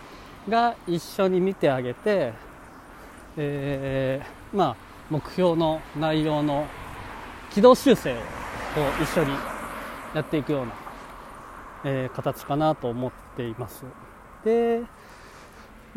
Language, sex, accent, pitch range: Japanese, male, native, 130-195 Hz